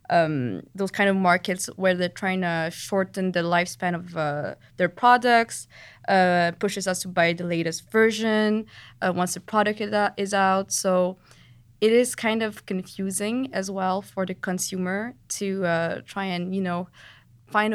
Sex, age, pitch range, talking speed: female, 20-39, 175-200 Hz, 160 wpm